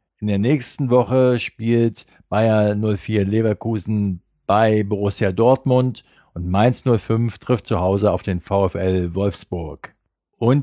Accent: German